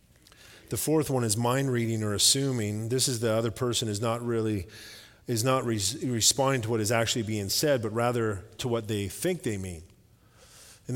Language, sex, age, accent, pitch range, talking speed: English, male, 40-59, American, 105-125 Hz, 190 wpm